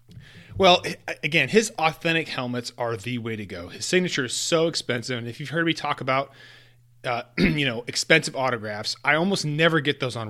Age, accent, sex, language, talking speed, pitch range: 30-49, American, male, English, 190 wpm, 120-160 Hz